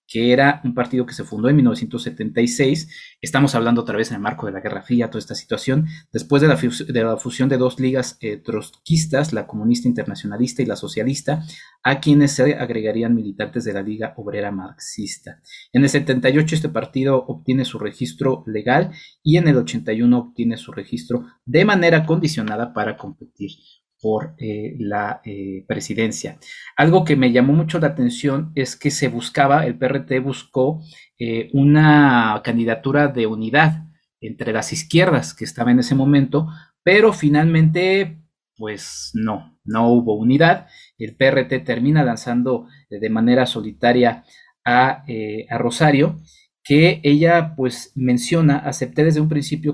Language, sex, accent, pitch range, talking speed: Spanish, male, Mexican, 115-145 Hz, 155 wpm